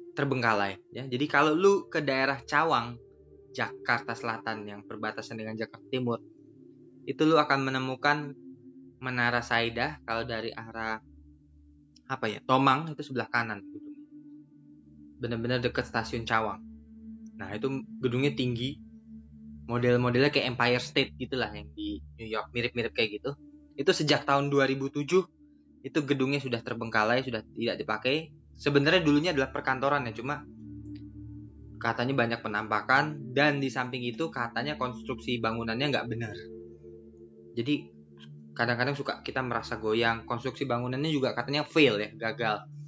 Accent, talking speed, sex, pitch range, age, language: native, 130 wpm, male, 105-135 Hz, 20-39, Indonesian